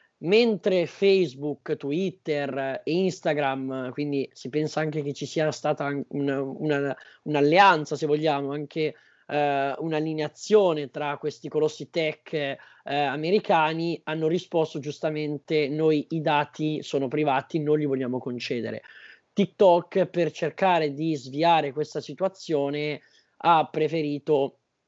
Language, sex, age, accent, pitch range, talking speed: Italian, male, 20-39, native, 140-165 Hz, 110 wpm